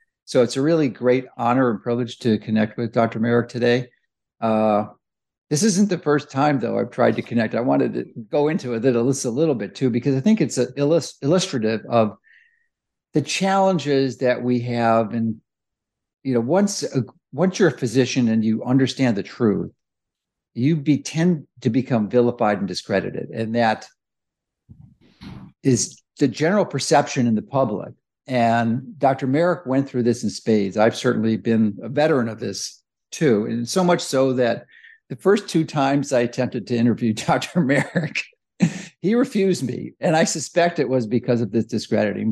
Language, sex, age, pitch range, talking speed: English, male, 50-69, 115-150 Hz, 175 wpm